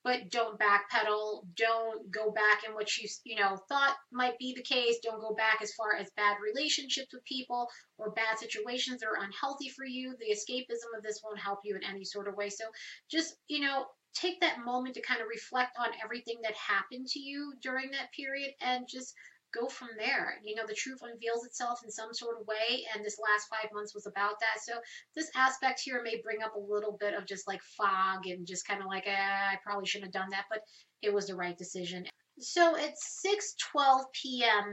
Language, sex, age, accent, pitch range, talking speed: English, female, 30-49, American, 205-255 Hz, 220 wpm